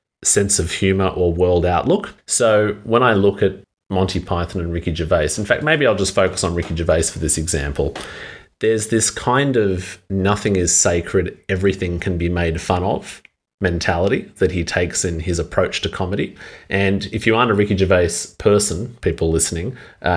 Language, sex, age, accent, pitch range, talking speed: English, male, 30-49, Australian, 85-95 Hz, 180 wpm